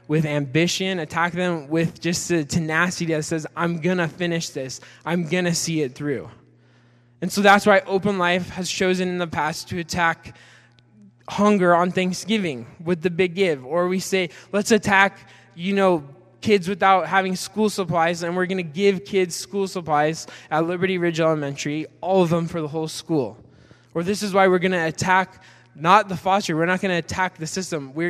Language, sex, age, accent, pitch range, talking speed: English, male, 10-29, American, 150-185 Hz, 195 wpm